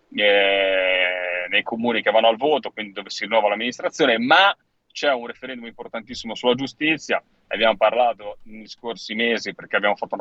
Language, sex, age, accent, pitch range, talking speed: Italian, male, 30-49, native, 110-140 Hz, 170 wpm